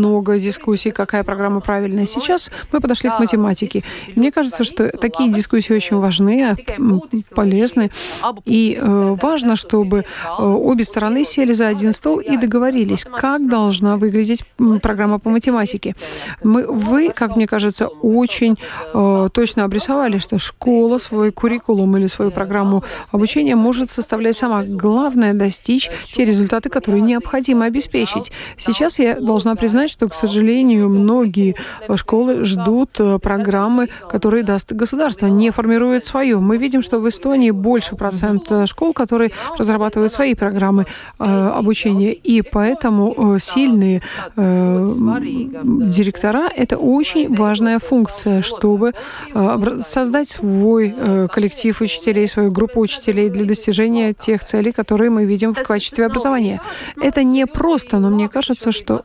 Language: Russian